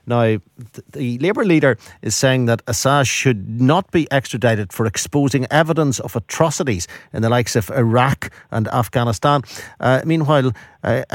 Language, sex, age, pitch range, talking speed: English, male, 50-69, 110-140 Hz, 145 wpm